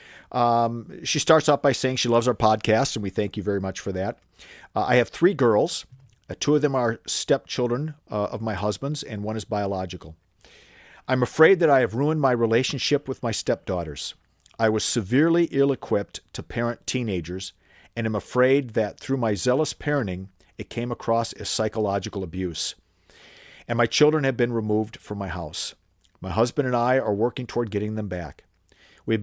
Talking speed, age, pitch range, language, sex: 185 wpm, 50-69, 105-135 Hz, English, male